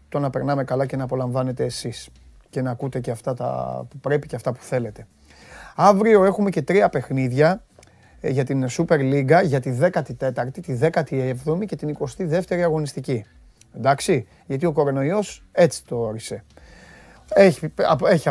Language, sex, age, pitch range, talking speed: Greek, male, 30-49, 135-185 Hz, 155 wpm